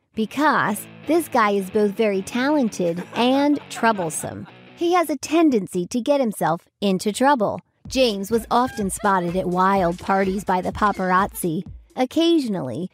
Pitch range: 195-270 Hz